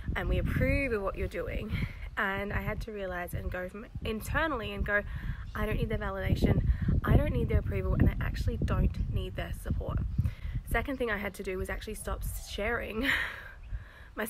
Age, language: 20-39, English